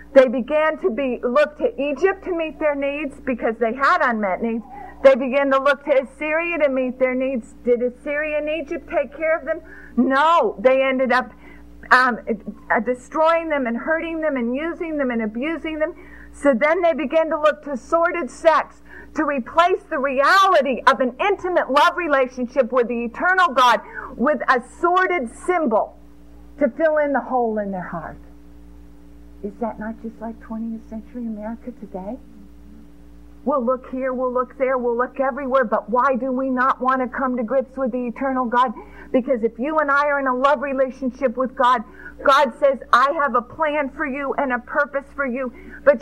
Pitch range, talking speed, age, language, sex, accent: 245-295 Hz, 185 wpm, 50-69, English, female, American